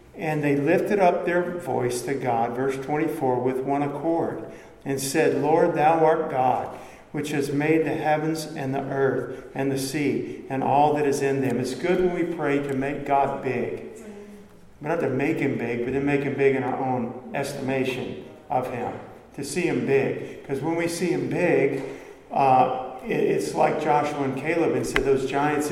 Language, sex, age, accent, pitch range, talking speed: English, male, 50-69, American, 135-165 Hz, 190 wpm